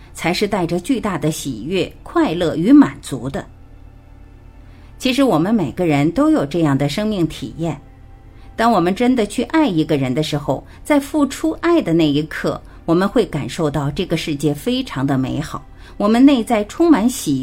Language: Chinese